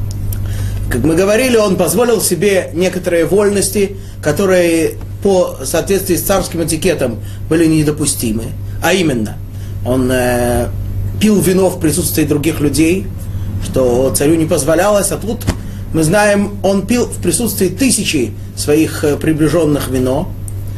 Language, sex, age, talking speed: Russian, male, 30-49, 120 wpm